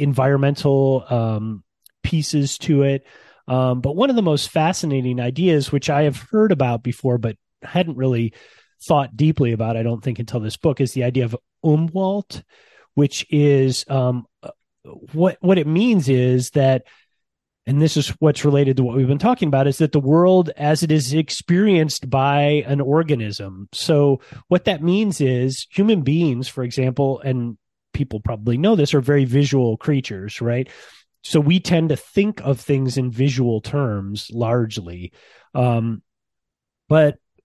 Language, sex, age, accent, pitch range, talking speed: English, male, 30-49, American, 125-155 Hz, 160 wpm